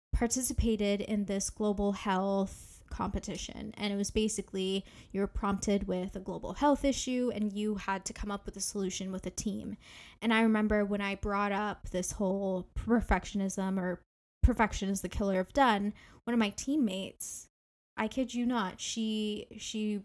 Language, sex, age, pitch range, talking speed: English, female, 10-29, 195-225 Hz, 170 wpm